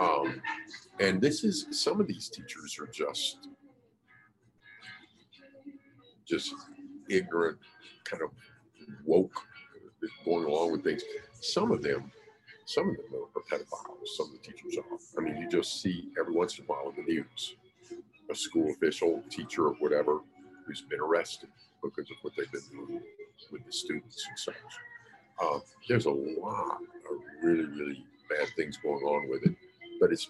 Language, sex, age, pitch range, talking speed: English, male, 50-69, 285-435 Hz, 155 wpm